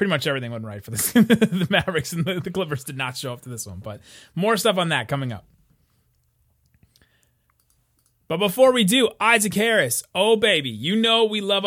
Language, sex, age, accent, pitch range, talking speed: English, male, 30-49, American, 140-185 Hz, 195 wpm